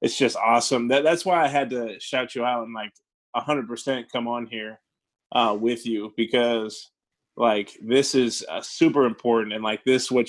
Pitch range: 115-135 Hz